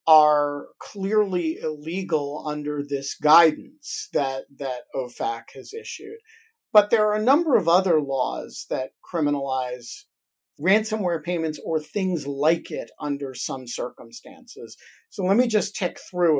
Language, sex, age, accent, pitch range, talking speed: English, male, 50-69, American, 145-195 Hz, 130 wpm